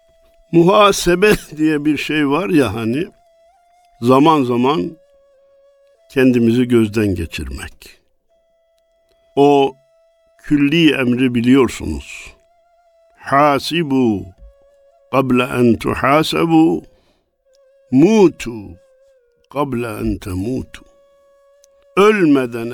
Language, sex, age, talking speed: Turkish, male, 60-79, 60 wpm